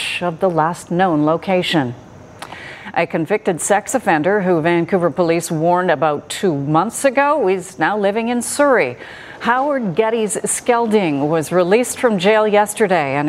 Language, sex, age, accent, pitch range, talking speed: English, female, 40-59, American, 165-210 Hz, 140 wpm